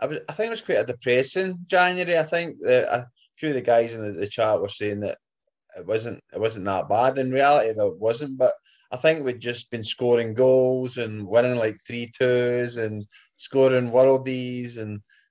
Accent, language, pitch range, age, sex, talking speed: British, English, 100-125 Hz, 20-39, male, 205 wpm